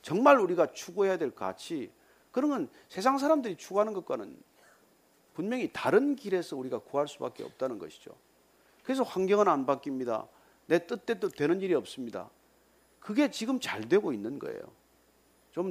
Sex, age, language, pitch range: male, 40-59, Korean, 165-265 Hz